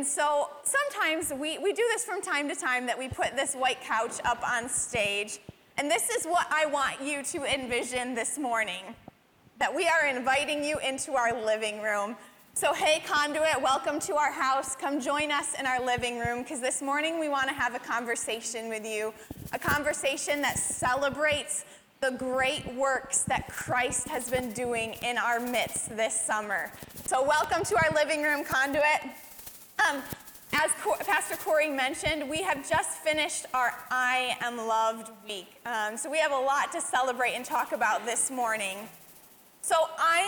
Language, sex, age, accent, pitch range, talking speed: English, female, 20-39, American, 250-310 Hz, 175 wpm